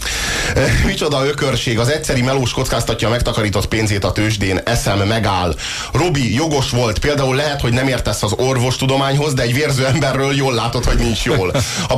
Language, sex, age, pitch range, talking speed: Hungarian, male, 30-49, 105-135 Hz, 170 wpm